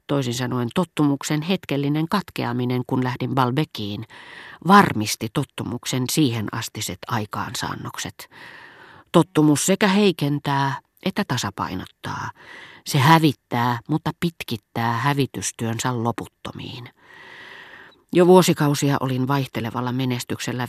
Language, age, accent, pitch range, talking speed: Finnish, 40-59, native, 115-150 Hz, 85 wpm